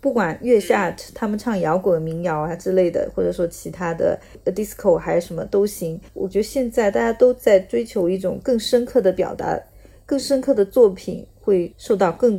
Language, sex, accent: Chinese, female, native